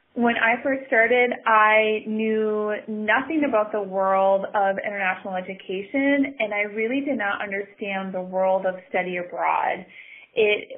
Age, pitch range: 30-49, 195-235 Hz